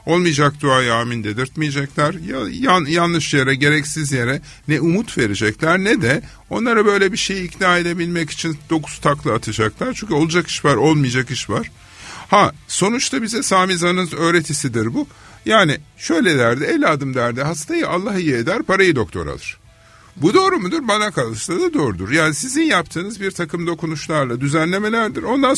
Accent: native